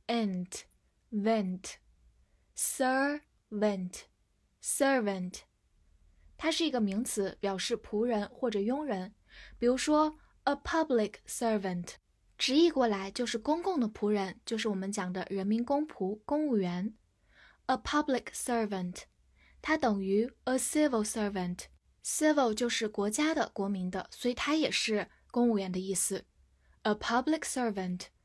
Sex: female